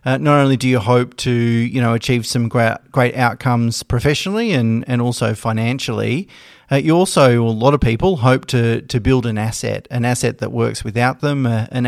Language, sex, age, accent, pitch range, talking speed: English, male, 30-49, Australian, 115-130 Hz, 205 wpm